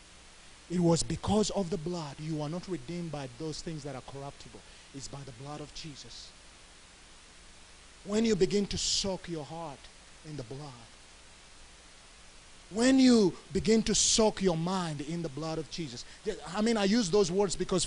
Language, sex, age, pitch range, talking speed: English, male, 30-49, 175-255 Hz, 170 wpm